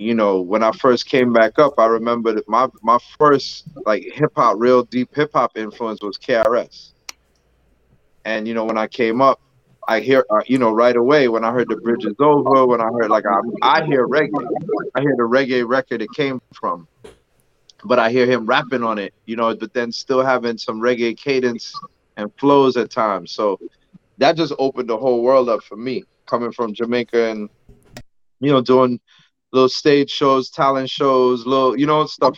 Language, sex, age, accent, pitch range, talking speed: English, male, 30-49, American, 110-130 Hz, 195 wpm